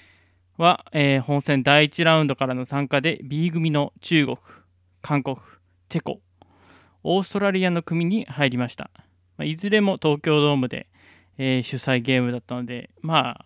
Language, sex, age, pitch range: Japanese, male, 20-39, 95-155 Hz